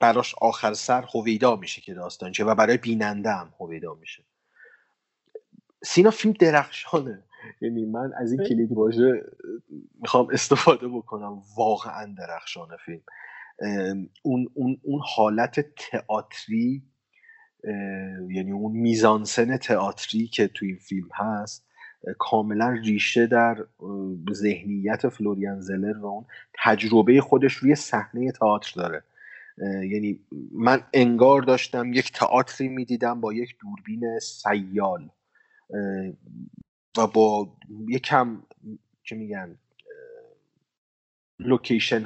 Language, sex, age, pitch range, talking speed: Persian, male, 30-49, 105-135 Hz, 105 wpm